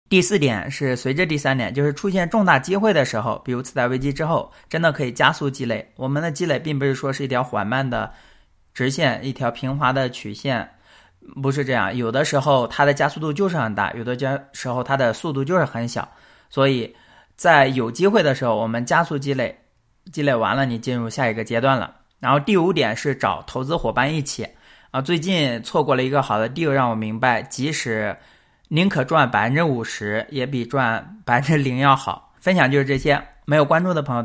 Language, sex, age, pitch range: Chinese, male, 20-39, 120-150 Hz